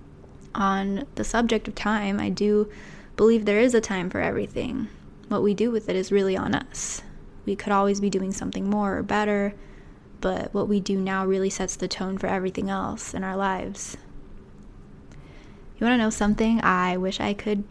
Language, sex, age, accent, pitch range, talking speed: English, female, 10-29, American, 190-210 Hz, 190 wpm